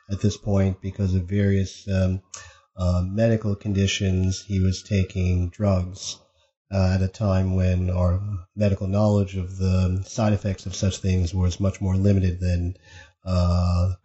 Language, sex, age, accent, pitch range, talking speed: English, male, 40-59, American, 95-100 Hz, 150 wpm